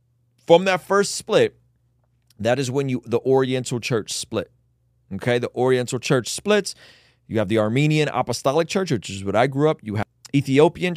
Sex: male